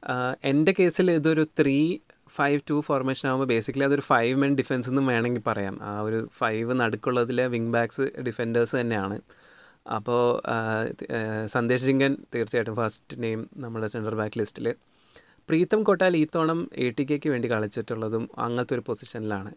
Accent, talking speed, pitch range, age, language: native, 140 wpm, 115-155 Hz, 30-49, Malayalam